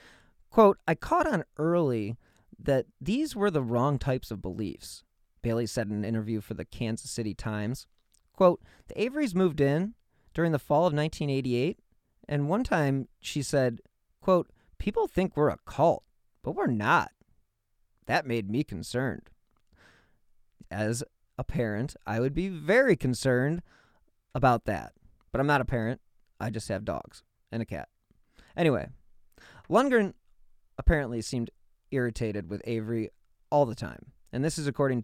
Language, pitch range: English, 110-145 Hz